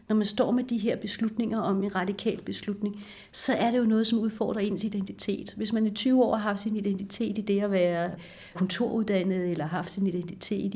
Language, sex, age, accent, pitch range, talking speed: Danish, female, 40-59, native, 185-215 Hz, 210 wpm